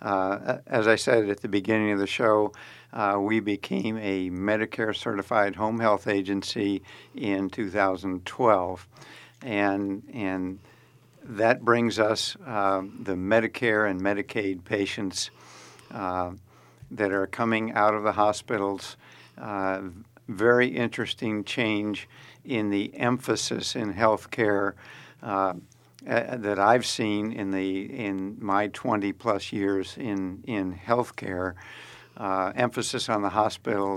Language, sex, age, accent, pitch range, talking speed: English, male, 60-79, American, 100-115 Hz, 120 wpm